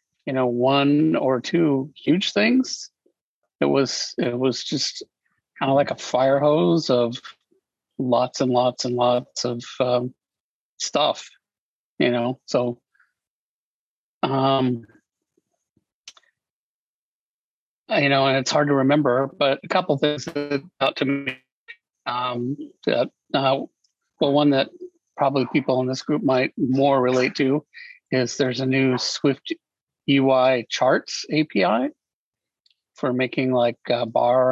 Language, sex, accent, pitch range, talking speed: English, male, American, 125-145 Hz, 130 wpm